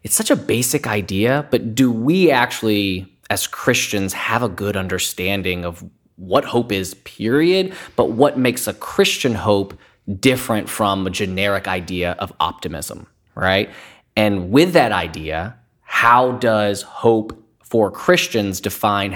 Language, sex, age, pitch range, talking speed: English, male, 20-39, 95-130 Hz, 140 wpm